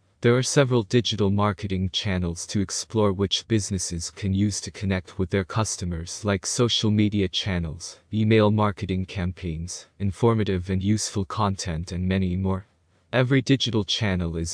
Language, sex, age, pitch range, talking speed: English, male, 20-39, 90-105 Hz, 145 wpm